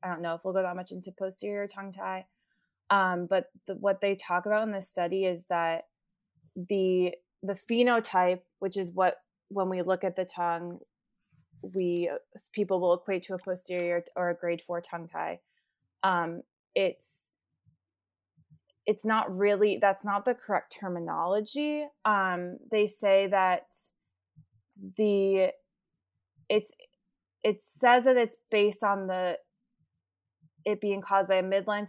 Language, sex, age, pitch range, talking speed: English, female, 20-39, 175-200 Hz, 150 wpm